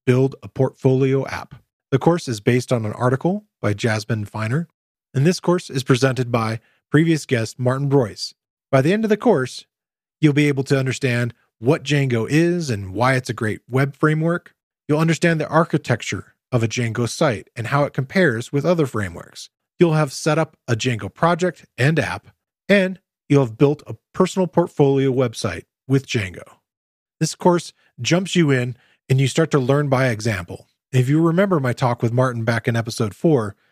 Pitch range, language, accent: 120-160 Hz, English, American